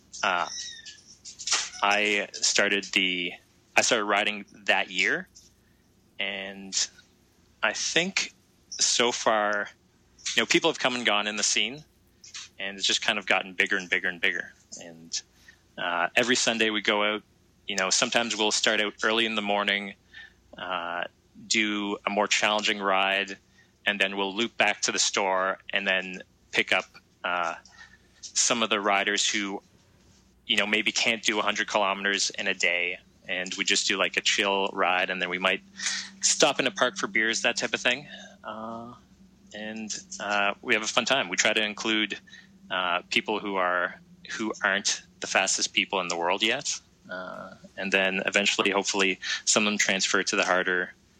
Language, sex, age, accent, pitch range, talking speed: English, male, 20-39, American, 95-110 Hz, 170 wpm